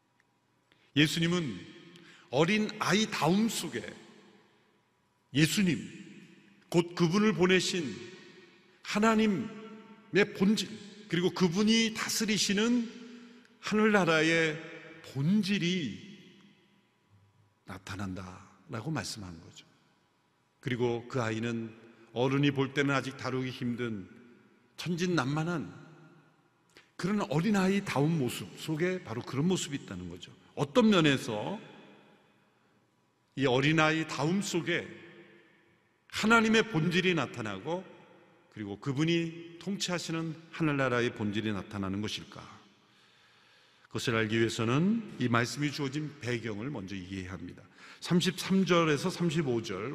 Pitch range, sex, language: 120-185 Hz, male, Korean